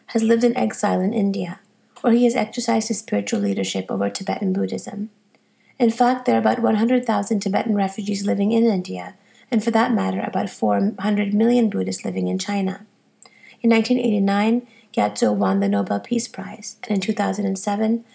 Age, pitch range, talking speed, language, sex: 30-49, 195-230 Hz, 160 wpm, English, female